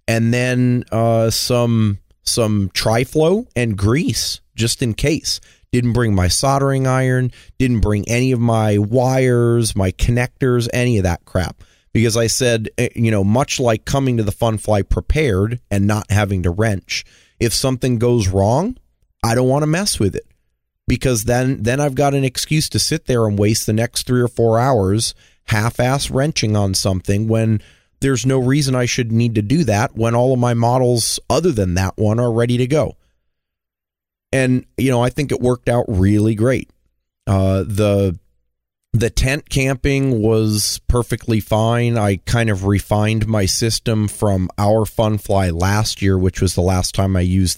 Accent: American